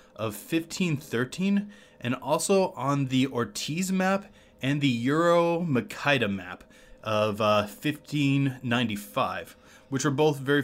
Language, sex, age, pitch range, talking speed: English, male, 20-39, 115-155 Hz, 130 wpm